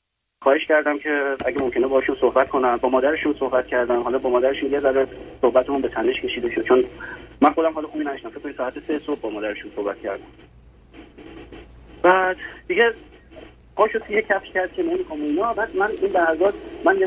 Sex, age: male, 30-49